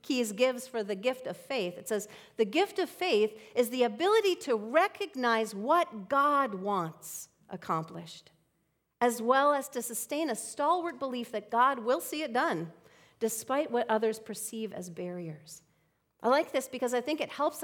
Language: English